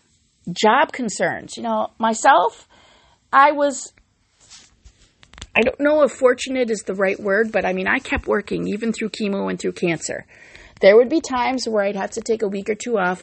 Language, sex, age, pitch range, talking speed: English, female, 40-59, 215-275 Hz, 190 wpm